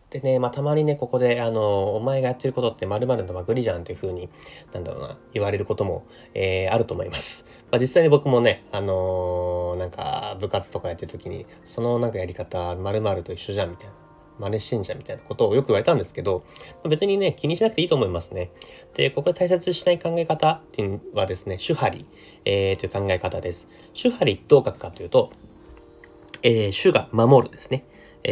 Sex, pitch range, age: male, 95-135 Hz, 30-49